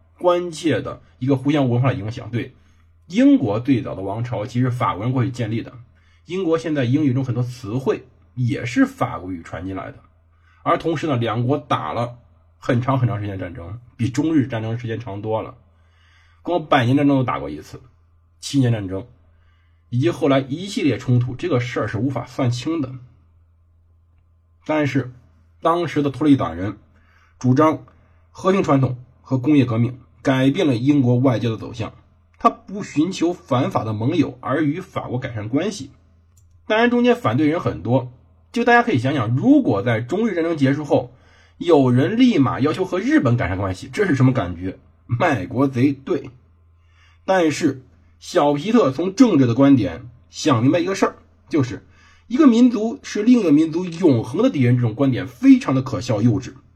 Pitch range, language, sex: 95-145 Hz, Chinese, male